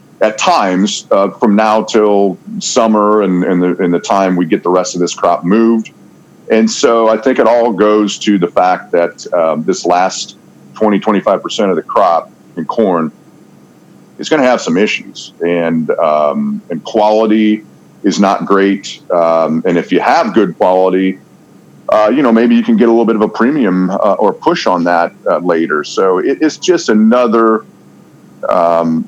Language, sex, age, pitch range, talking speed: English, male, 40-59, 90-110 Hz, 175 wpm